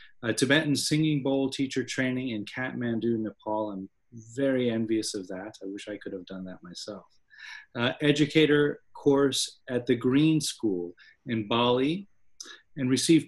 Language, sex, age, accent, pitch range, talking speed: English, male, 30-49, American, 115-145 Hz, 145 wpm